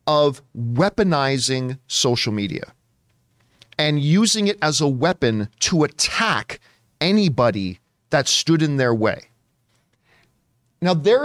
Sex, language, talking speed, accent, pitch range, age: male, English, 105 wpm, American, 130-180 Hz, 40-59